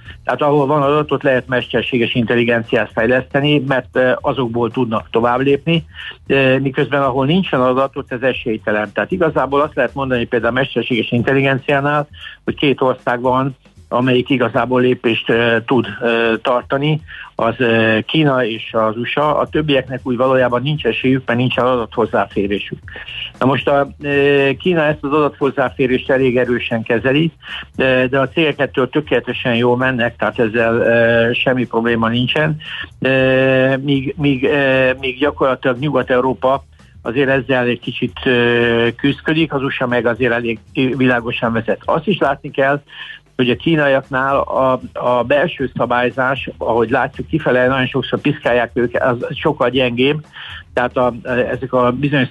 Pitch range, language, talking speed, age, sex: 120-135 Hz, Hungarian, 135 wpm, 60-79, male